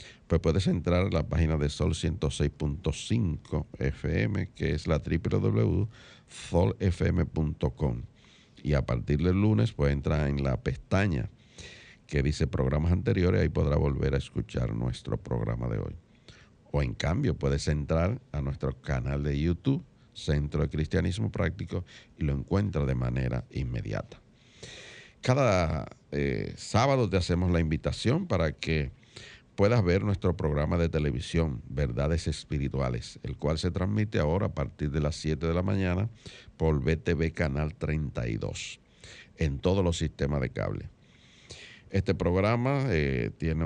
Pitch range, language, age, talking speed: 75-95 Hz, Spanish, 50-69, 140 wpm